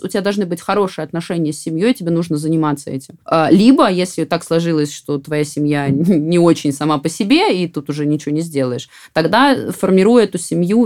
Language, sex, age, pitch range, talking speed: Russian, female, 20-39, 155-205 Hz, 190 wpm